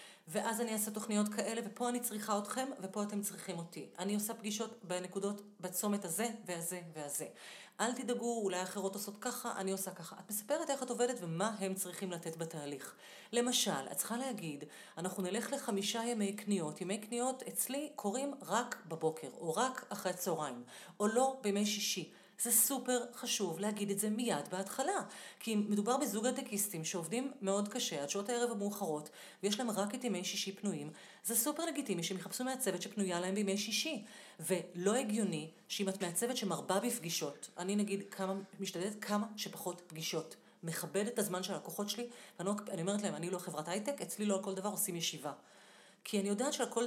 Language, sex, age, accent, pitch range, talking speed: Hebrew, female, 40-59, native, 185-230 Hz, 175 wpm